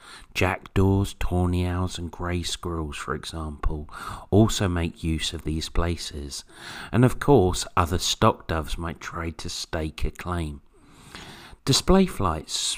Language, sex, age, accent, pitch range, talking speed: English, male, 40-59, British, 80-105 Hz, 130 wpm